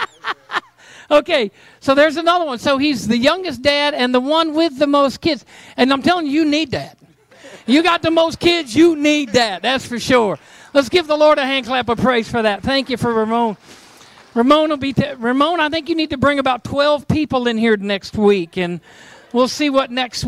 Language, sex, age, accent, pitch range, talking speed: English, male, 50-69, American, 200-275 Hz, 205 wpm